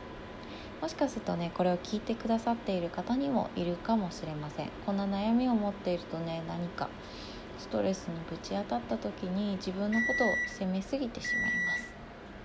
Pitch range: 185-250 Hz